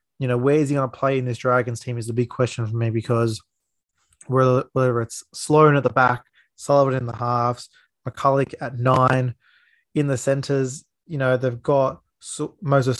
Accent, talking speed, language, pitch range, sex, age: Australian, 185 wpm, English, 120-140 Hz, male, 20-39